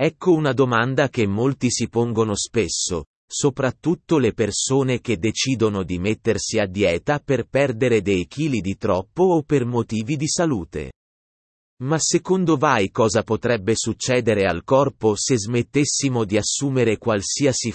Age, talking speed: 30-49, 140 wpm